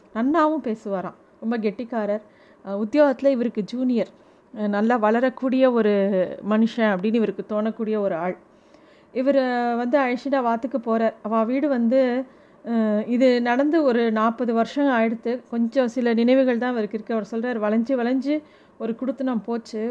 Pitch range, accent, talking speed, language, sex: 220-265 Hz, native, 135 wpm, Tamil, female